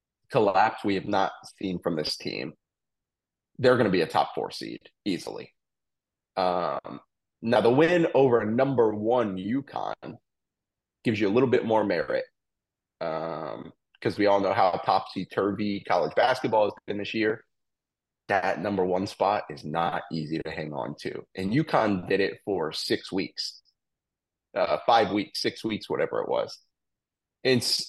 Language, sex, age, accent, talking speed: English, male, 30-49, American, 155 wpm